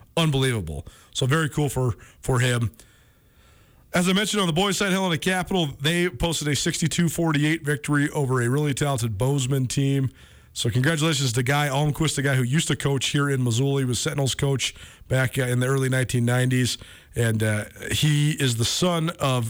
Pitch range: 125-155 Hz